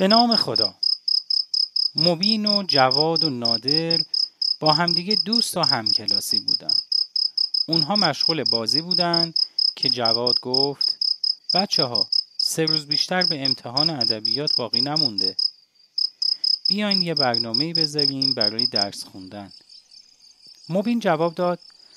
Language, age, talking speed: English, 30-49, 110 wpm